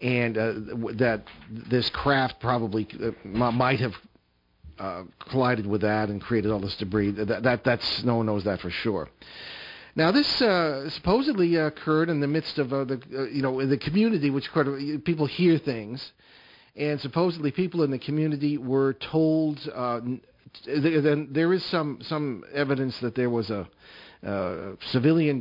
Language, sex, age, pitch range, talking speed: English, male, 50-69, 110-140 Hz, 170 wpm